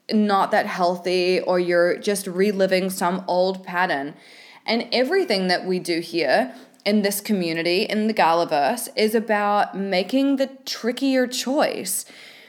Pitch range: 180-225 Hz